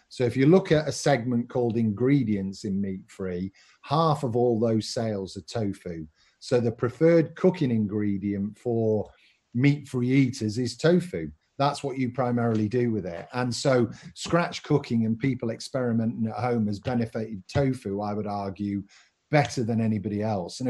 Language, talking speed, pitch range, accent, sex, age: English, 165 wpm, 110-140 Hz, British, male, 40-59